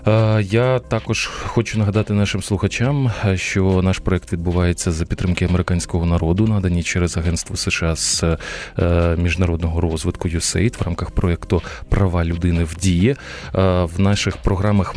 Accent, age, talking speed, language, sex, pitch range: native, 20-39, 130 wpm, Ukrainian, male, 85-105 Hz